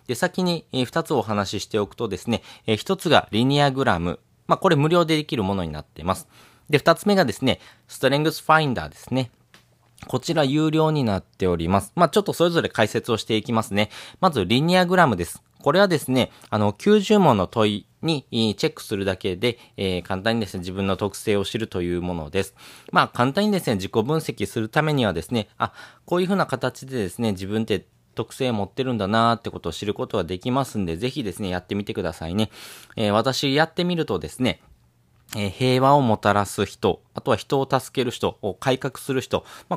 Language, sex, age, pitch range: Japanese, male, 20-39, 100-145 Hz